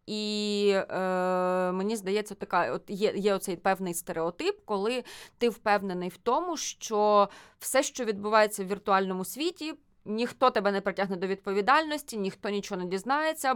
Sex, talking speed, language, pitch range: female, 145 wpm, Ukrainian, 185-250 Hz